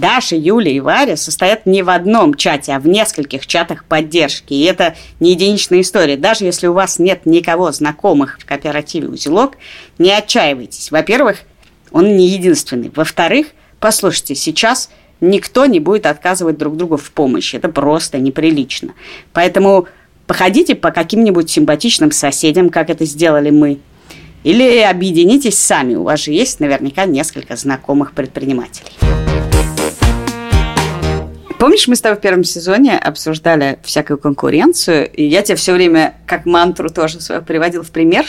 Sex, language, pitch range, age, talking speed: female, Russian, 150-195 Hz, 30-49, 145 wpm